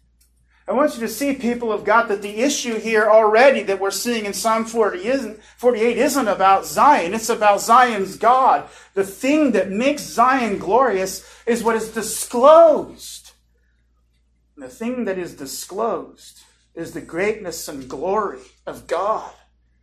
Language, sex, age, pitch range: English, male, 40-59, 155-230 Hz